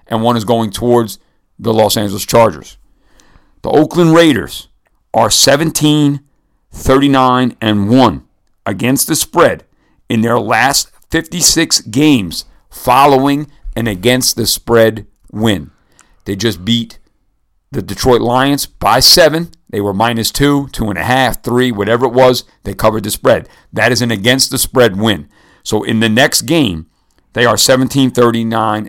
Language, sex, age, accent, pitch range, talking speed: English, male, 50-69, American, 105-130 Hz, 130 wpm